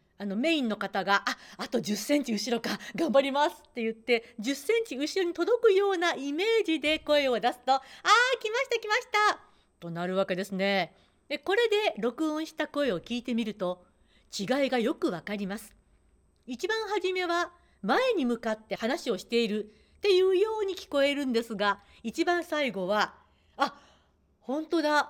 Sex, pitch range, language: female, 215-345 Hz, Japanese